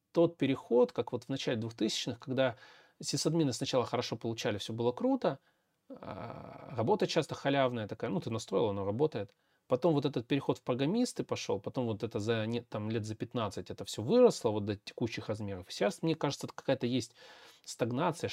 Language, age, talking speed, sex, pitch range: Russian, 30-49, 165 wpm, male, 115-160 Hz